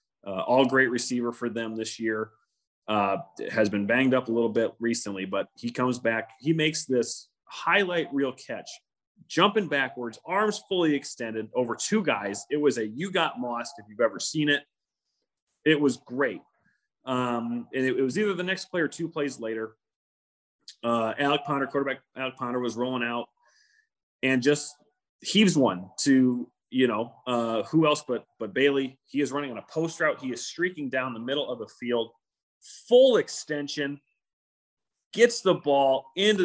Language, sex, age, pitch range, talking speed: English, male, 30-49, 120-160 Hz, 175 wpm